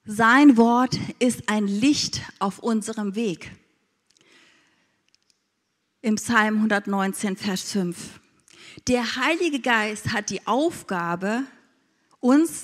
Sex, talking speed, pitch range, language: female, 95 wpm, 205-245 Hz, German